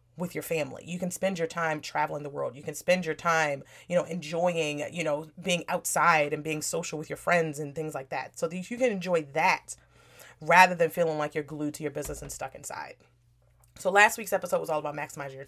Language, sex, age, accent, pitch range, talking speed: English, female, 30-49, American, 150-180 Hz, 230 wpm